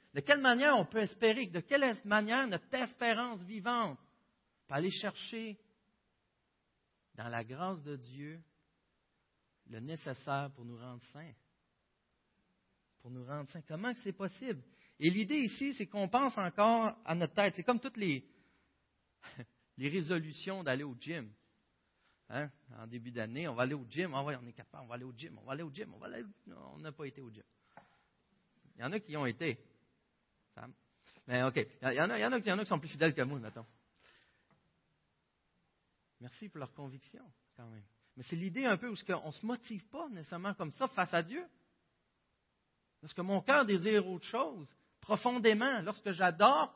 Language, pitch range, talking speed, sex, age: French, 135-215 Hz, 190 wpm, male, 50-69